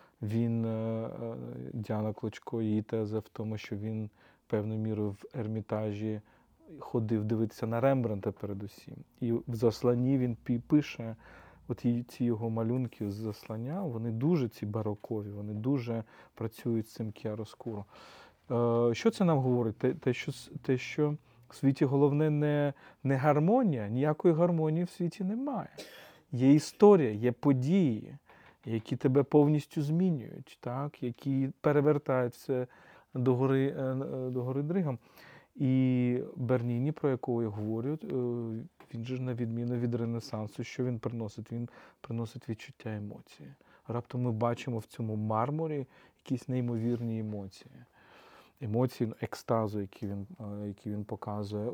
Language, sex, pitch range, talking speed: Ukrainian, male, 110-135 Hz, 125 wpm